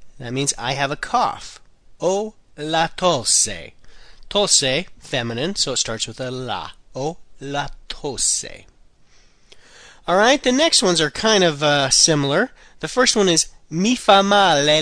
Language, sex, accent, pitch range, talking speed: English, male, American, 125-175 Hz, 155 wpm